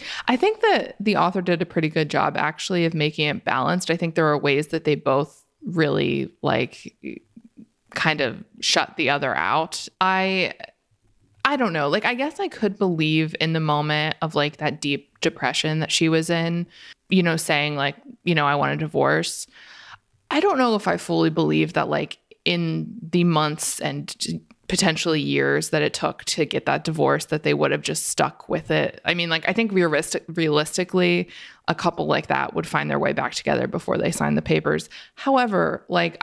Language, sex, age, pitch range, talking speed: English, female, 20-39, 150-190 Hz, 195 wpm